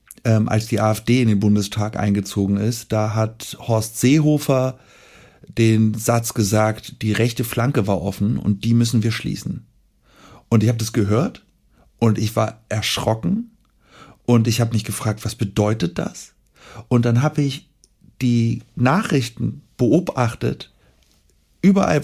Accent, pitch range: German, 110-135 Hz